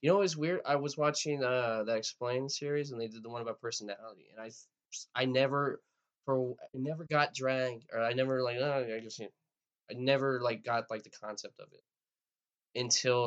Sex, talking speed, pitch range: male, 210 wpm, 115-150 Hz